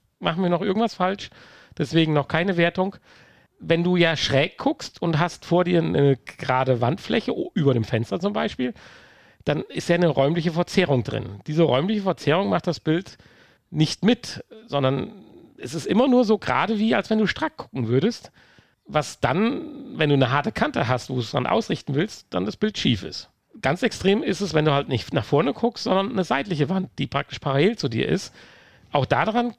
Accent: German